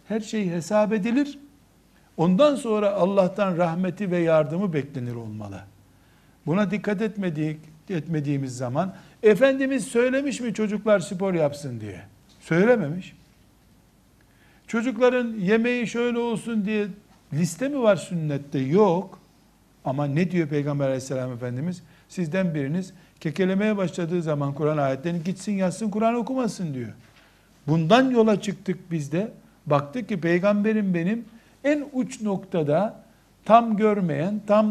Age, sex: 60-79, male